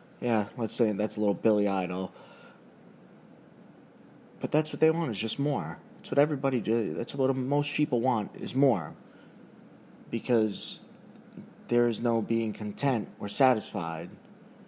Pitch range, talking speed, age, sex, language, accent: 100-125 Hz, 145 wpm, 30-49, male, English, American